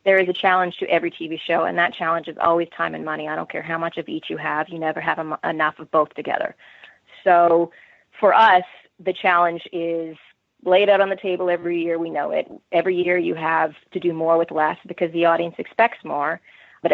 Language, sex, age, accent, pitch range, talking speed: English, female, 30-49, American, 165-185 Hz, 225 wpm